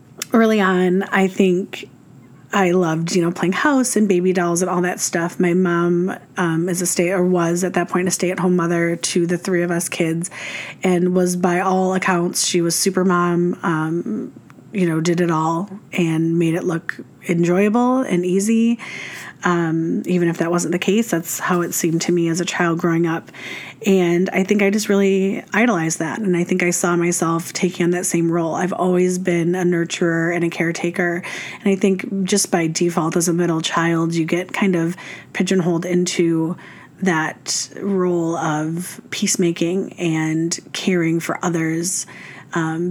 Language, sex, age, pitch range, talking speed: English, female, 30-49, 170-190 Hz, 185 wpm